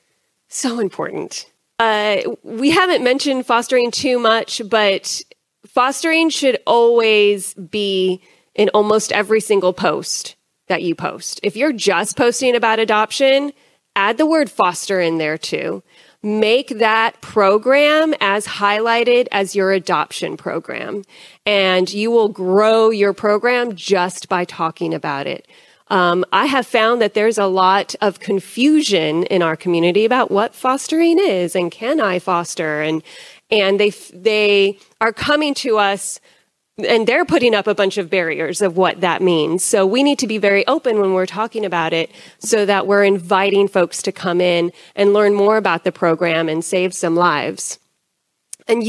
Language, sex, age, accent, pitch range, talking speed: English, female, 30-49, American, 185-235 Hz, 155 wpm